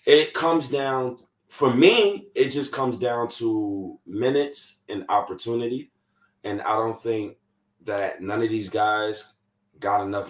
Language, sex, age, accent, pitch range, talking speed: English, male, 20-39, American, 110-150 Hz, 140 wpm